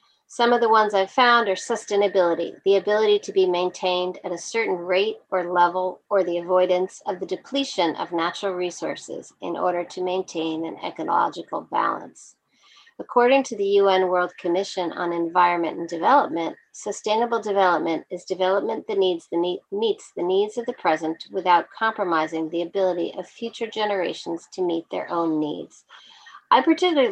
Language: English